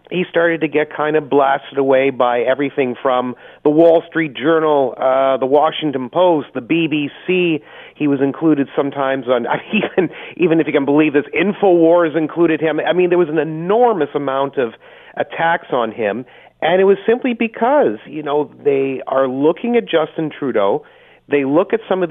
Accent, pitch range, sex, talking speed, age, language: American, 135-165 Hz, male, 180 wpm, 30-49, English